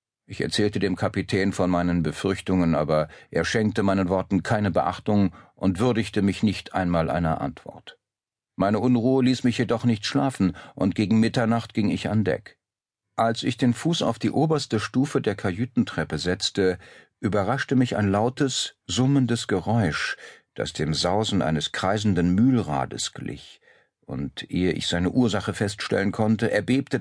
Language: German